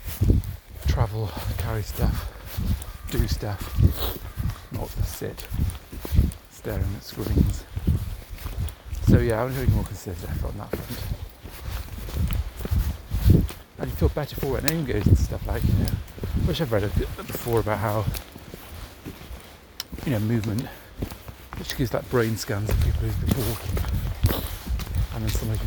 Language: English